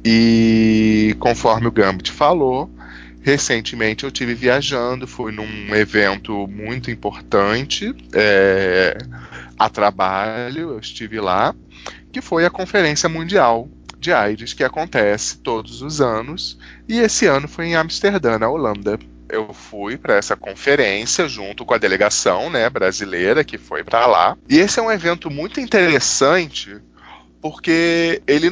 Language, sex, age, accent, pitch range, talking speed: Portuguese, male, 20-39, Brazilian, 105-150 Hz, 135 wpm